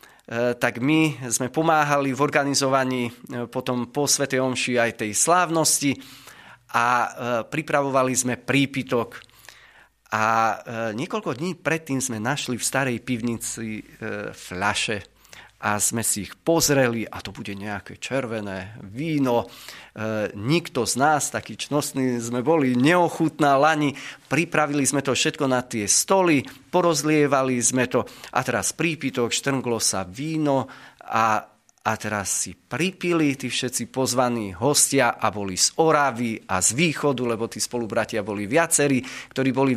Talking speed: 130 wpm